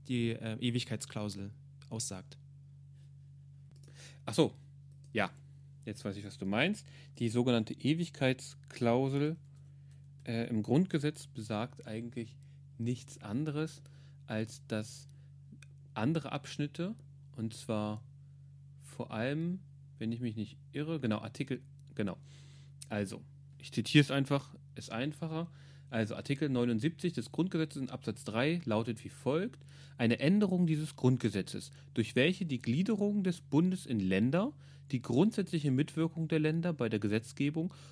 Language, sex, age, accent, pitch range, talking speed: German, male, 30-49, German, 120-145 Hz, 120 wpm